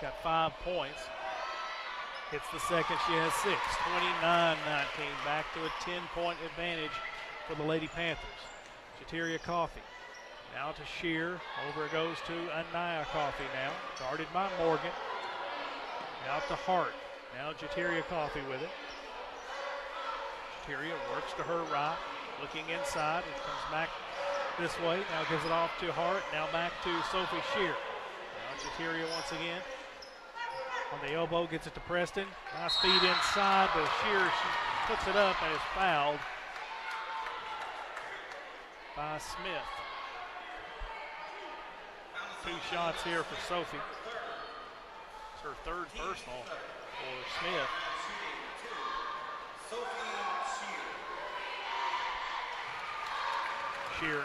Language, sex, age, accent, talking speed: English, male, 40-59, American, 110 wpm